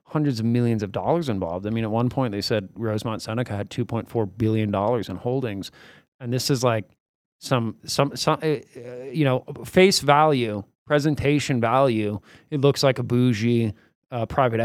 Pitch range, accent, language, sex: 105-130 Hz, American, English, male